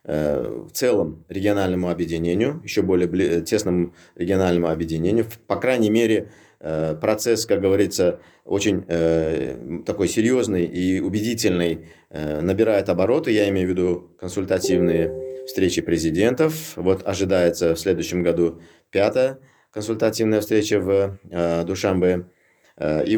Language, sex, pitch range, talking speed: Russian, male, 85-110 Hz, 105 wpm